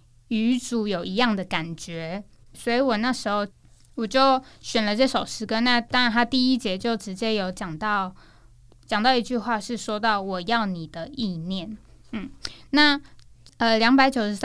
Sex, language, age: female, Chinese, 10-29